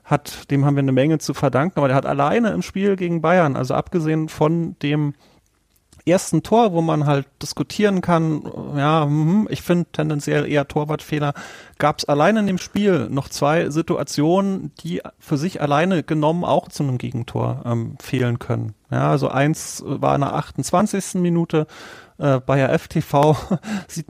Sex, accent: male, German